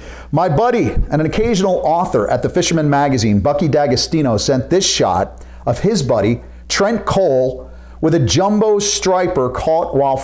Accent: American